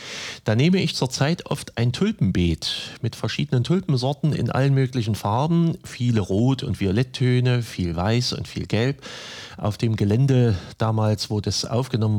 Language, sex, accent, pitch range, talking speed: German, male, German, 100-130 Hz, 150 wpm